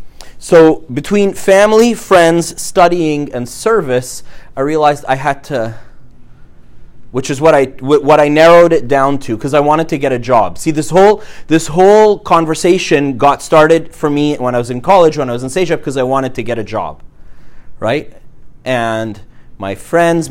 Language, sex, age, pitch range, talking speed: English, male, 30-49, 125-165 Hz, 180 wpm